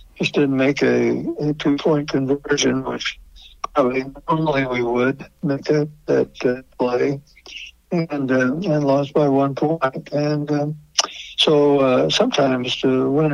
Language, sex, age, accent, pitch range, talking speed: English, male, 60-79, American, 130-145 Hz, 140 wpm